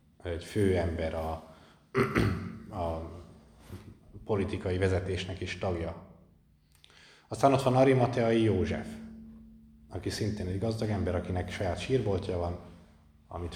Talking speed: 105 wpm